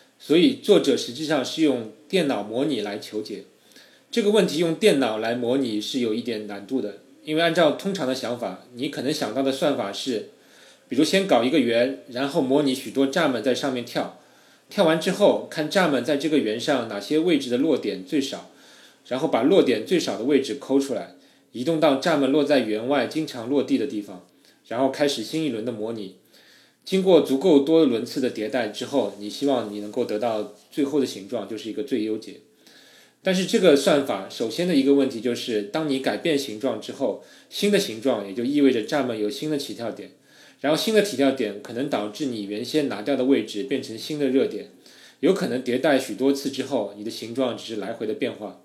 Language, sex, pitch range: Chinese, male, 110-155 Hz